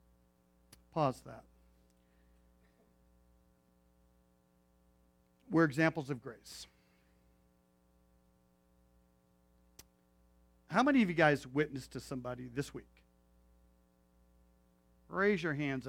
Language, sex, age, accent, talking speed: English, male, 40-59, American, 70 wpm